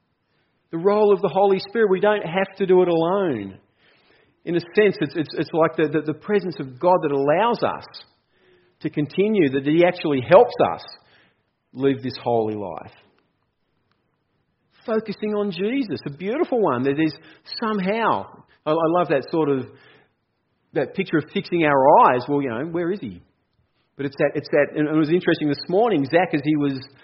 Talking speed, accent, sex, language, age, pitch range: 180 wpm, Australian, male, English, 40-59, 150-210 Hz